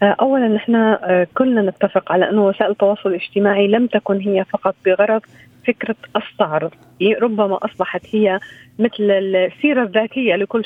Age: 30-49